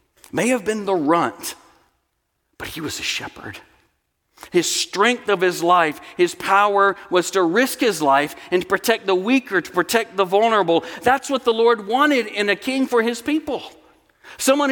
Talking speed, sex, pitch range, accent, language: 175 wpm, male, 155-225 Hz, American, English